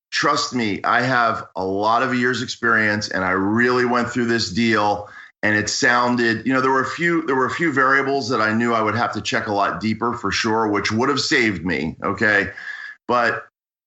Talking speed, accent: 215 wpm, American